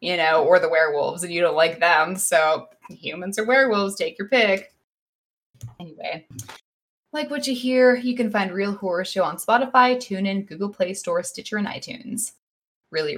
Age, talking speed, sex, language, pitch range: 10-29, 175 wpm, female, English, 180-240 Hz